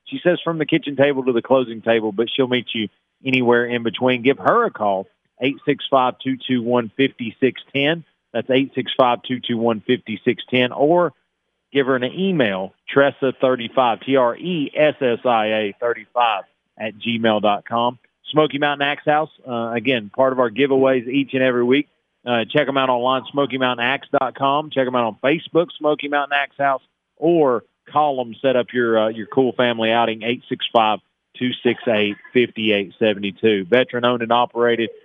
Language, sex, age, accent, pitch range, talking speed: English, male, 40-59, American, 120-140 Hz, 135 wpm